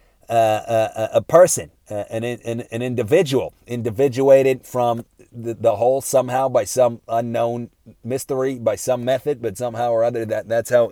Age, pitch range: 30-49, 110-130 Hz